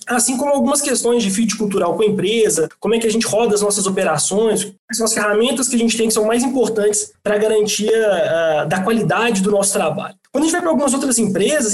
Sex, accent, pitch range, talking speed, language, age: male, Brazilian, 210-260 Hz, 240 wpm, Portuguese, 20-39